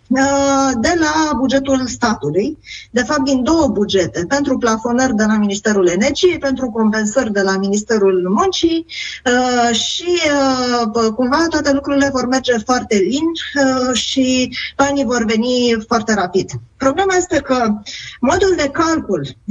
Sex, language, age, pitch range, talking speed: female, Romanian, 20-39, 215-280 Hz, 125 wpm